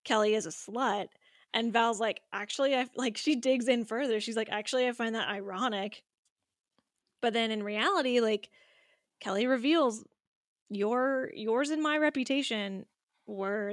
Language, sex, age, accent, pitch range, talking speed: English, female, 10-29, American, 210-270 Hz, 150 wpm